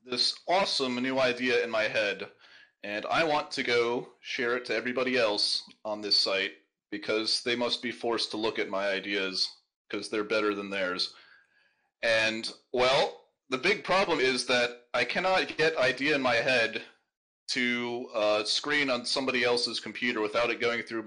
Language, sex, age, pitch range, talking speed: English, male, 30-49, 105-130 Hz, 170 wpm